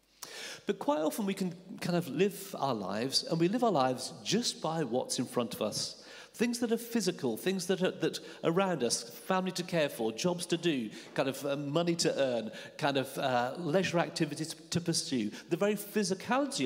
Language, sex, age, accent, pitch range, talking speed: English, male, 40-59, British, 145-215 Hz, 195 wpm